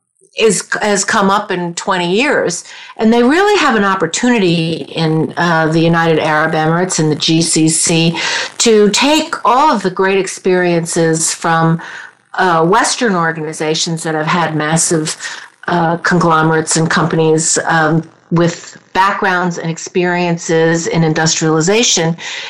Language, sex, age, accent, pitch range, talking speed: English, female, 50-69, American, 160-205 Hz, 125 wpm